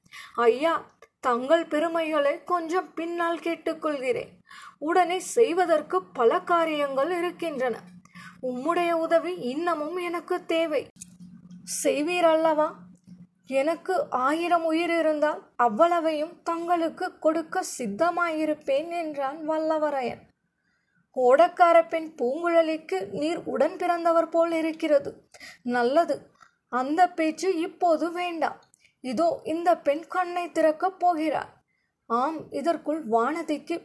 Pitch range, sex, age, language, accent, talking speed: 285-340 Hz, female, 20-39, Tamil, native, 80 wpm